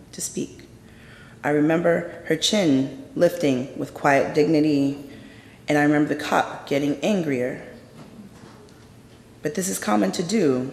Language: English